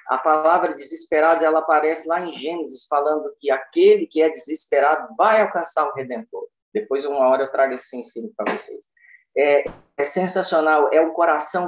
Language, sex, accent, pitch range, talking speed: Portuguese, male, Brazilian, 130-220 Hz, 170 wpm